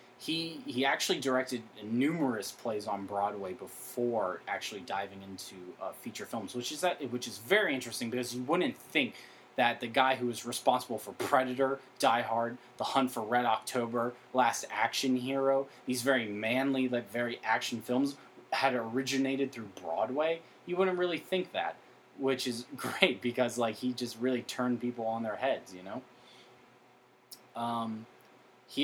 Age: 20-39